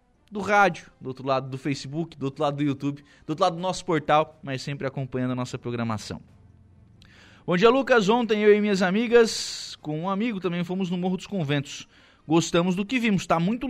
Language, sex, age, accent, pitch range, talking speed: Portuguese, male, 20-39, Brazilian, 120-165 Hz, 205 wpm